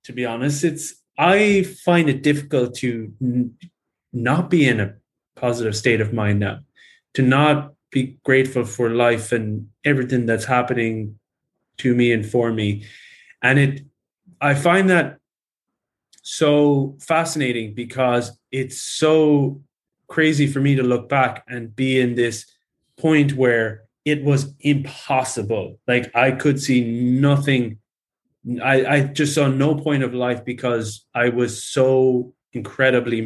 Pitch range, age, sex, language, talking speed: 120-155 Hz, 20-39, male, English, 140 wpm